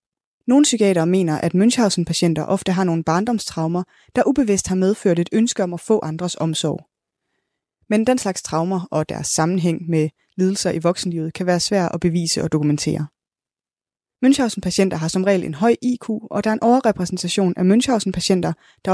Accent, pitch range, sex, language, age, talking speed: native, 165-210 Hz, female, Danish, 20-39, 170 wpm